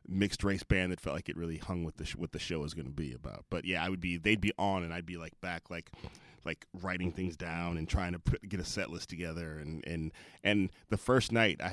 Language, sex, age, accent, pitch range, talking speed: English, male, 30-49, American, 85-110 Hz, 275 wpm